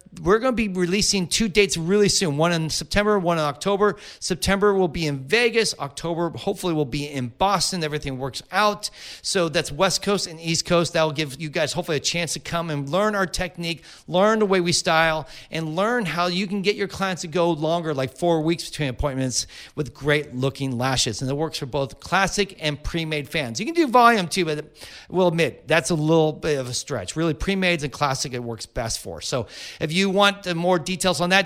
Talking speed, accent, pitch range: 225 wpm, American, 150-195 Hz